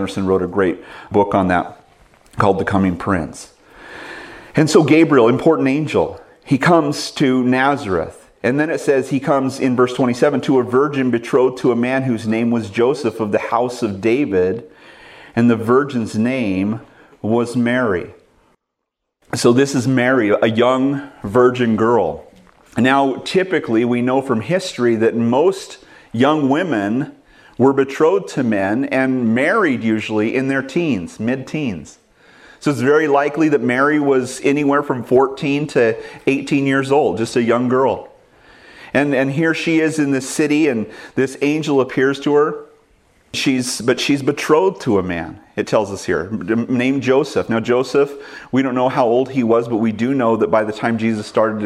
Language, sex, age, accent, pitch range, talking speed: English, male, 40-59, American, 115-140 Hz, 165 wpm